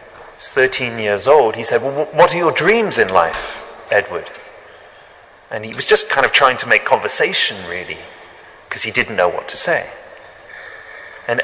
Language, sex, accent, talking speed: English, male, British, 170 wpm